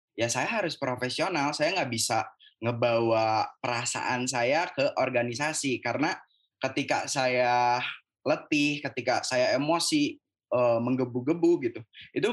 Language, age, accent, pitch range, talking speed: Indonesian, 10-29, native, 115-140 Hz, 110 wpm